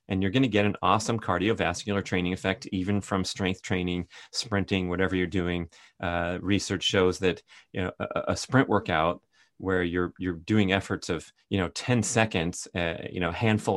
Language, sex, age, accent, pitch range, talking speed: English, male, 30-49, American, 90-100 Hz, 170 wpm